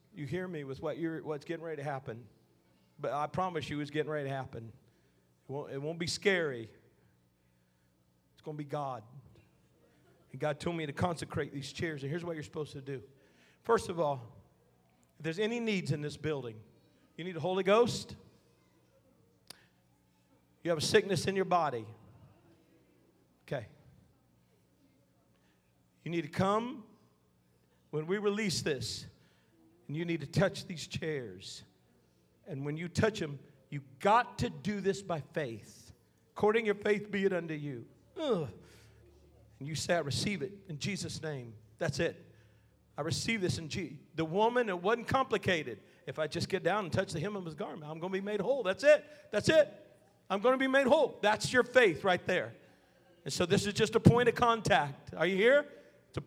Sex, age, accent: male, 40-59, American